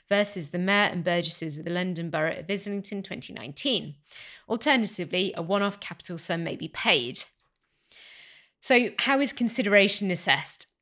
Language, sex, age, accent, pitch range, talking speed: English, female, 30-49, British, 170-215 Hz, 140 wpm